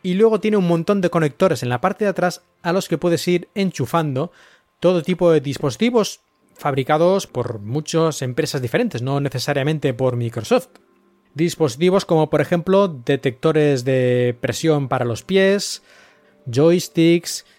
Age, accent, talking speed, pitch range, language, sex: 30-49, Spanish, 145 wpm, 135-175 Hz, Spanish, male